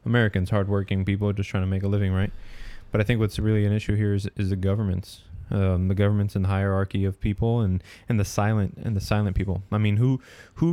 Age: 20-39